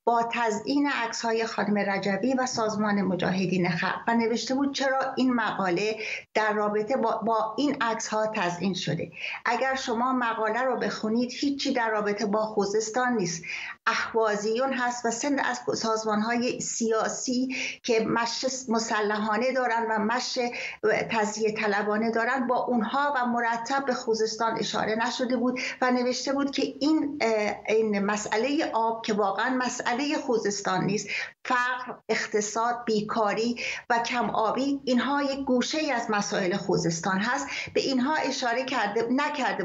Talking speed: 140 wpm